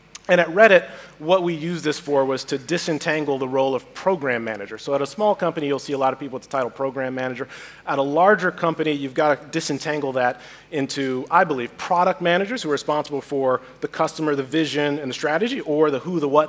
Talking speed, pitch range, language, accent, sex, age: 225 wpm, 135-170 Hz, English, American, male, 30-49